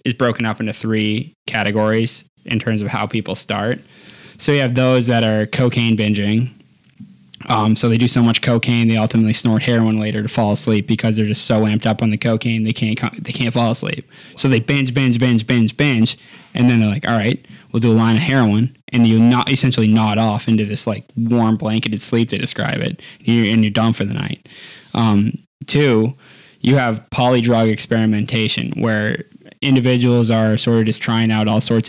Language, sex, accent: English, male, American